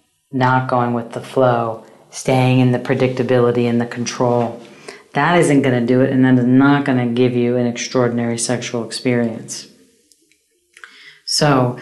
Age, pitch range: 40-59, 120-145 Hz